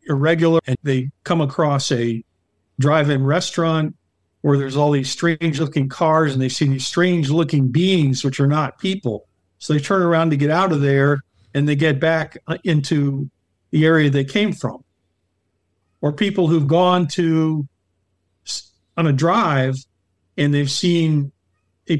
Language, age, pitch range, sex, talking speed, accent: English, 50-69, 130-160 Hz, male, 155 wpm, American